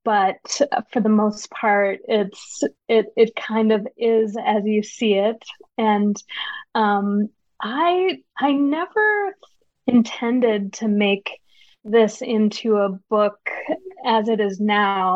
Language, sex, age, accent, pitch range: Chinese, female, 20-39, American, 200-230 Hz